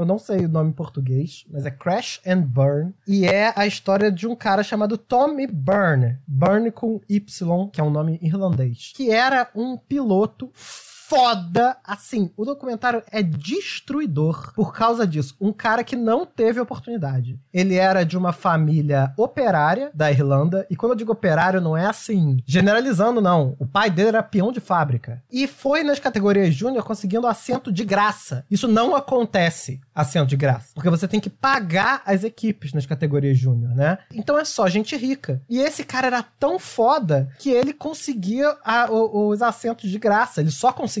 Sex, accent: male, Brazilian